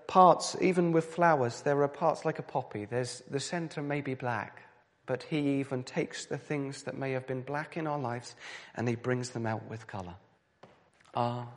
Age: 40-59